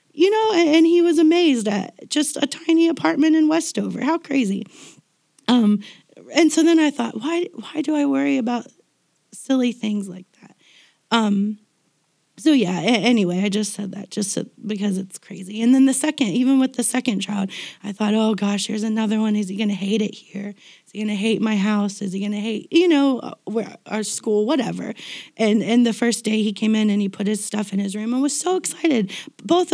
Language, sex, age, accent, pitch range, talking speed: English, female, 30-49, American, 200-245 Hz, 215 wpm